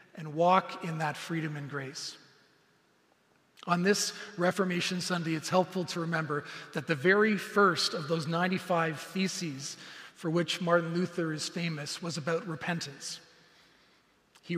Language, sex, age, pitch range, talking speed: English, male, 40-59, 160-190 Hz, 135 wpm